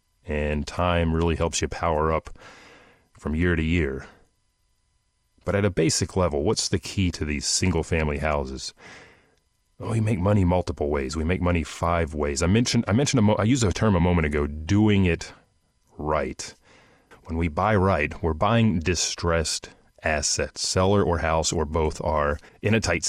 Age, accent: 30-49, American